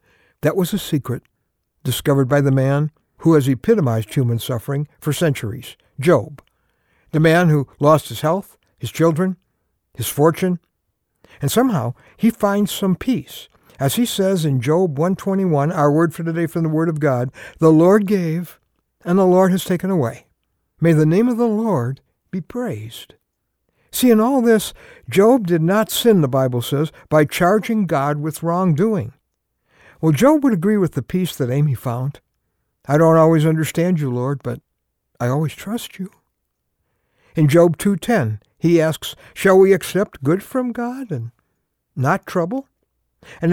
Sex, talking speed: male, 160 wpm